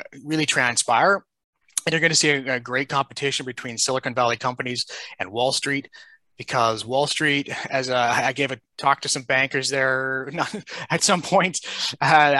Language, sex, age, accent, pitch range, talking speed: English, male, 30-49, American, 120-145 Hz, 175 wpm